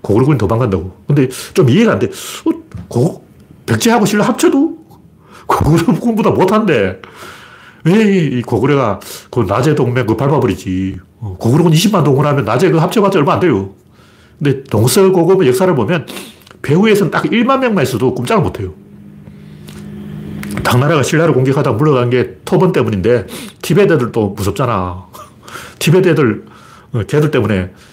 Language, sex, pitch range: Korean, male, 105-165 Hz